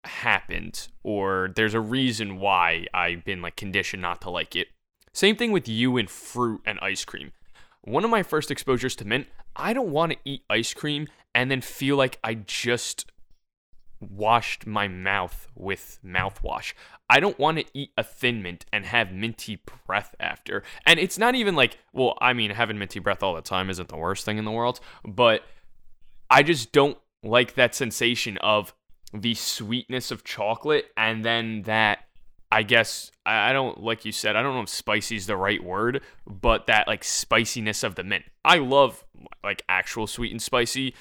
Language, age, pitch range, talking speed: English, 20-39, 100-125 Hz, 185 wpm